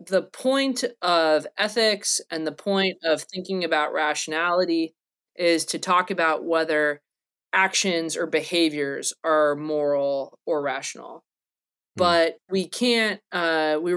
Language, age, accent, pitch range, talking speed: English, 20-39, American, 155-200 Hz, 120 wpm